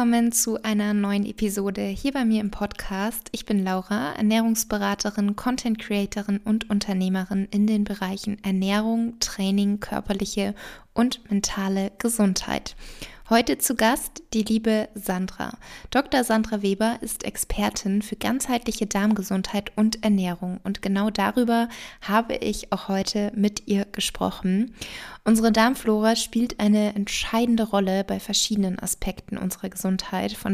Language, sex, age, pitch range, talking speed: German, female, 20-39, 200-225 Hz, 125 wpm